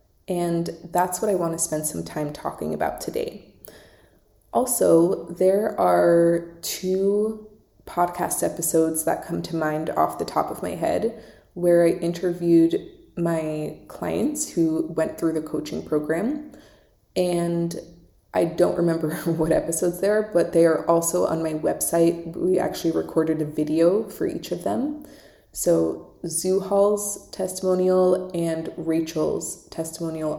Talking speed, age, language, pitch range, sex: 135 wpm, 20-39, English, 160-185 Hz, female